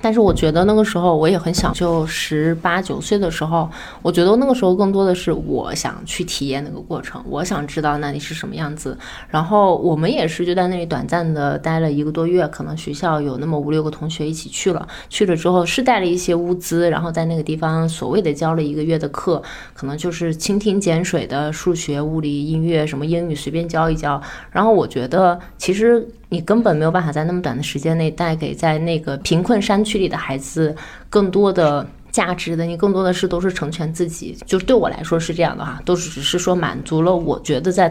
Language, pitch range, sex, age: Chinese, 155-190 Hz, female, 20-39